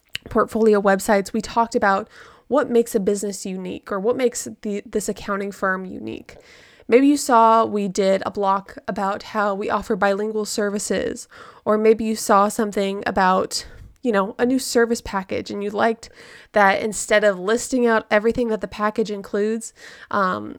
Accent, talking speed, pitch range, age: American, 165 wpm, 200-235 Hz, 20-39